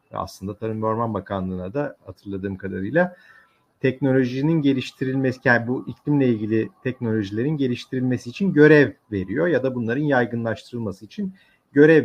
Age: 40-59